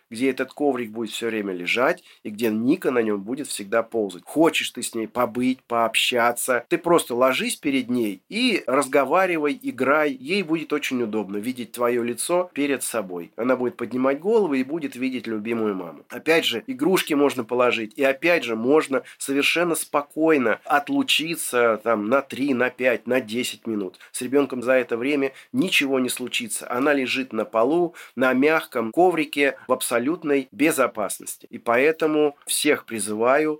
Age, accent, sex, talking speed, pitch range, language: 30-49, native, male, 160 wpm, 115-150 Hz, Russian